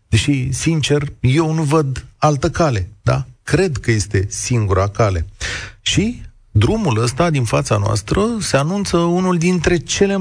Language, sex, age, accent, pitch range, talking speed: Romanian, male, 40-59, native, 105-150 Hz, 135 wpm